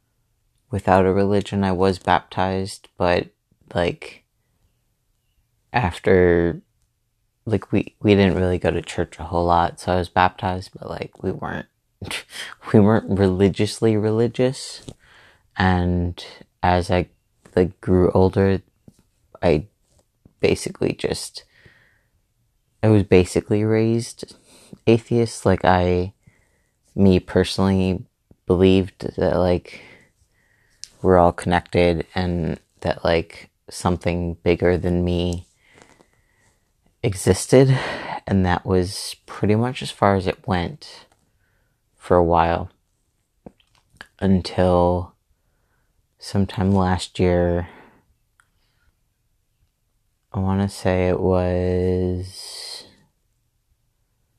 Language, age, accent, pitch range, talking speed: English, 30-49, American, 90-110 Hz, 95 wpm